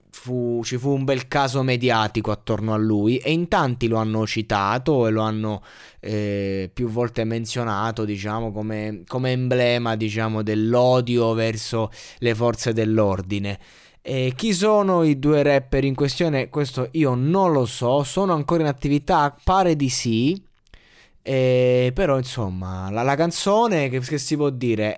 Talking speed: 155 wpm